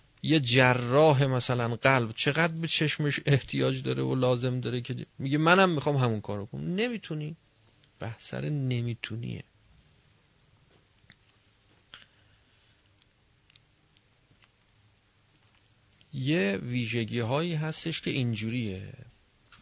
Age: 40-59